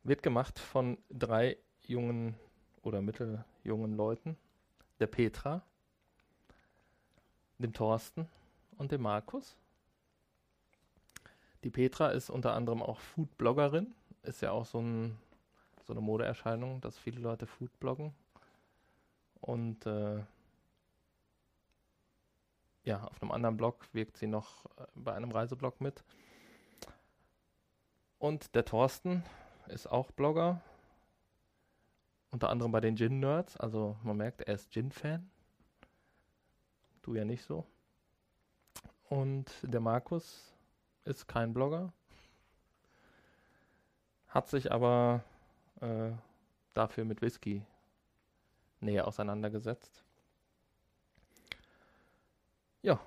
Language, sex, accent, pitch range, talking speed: German, male, German, 110-135 Hz, 95 wpm